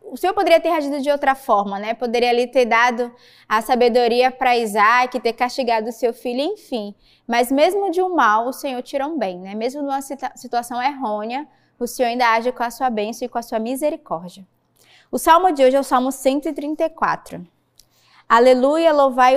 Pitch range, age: 230-290 Hz, 20-39